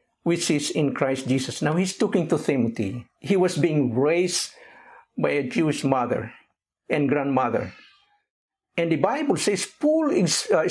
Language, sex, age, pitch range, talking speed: English, male, 60-79, 130-185 Hz, 145 wpm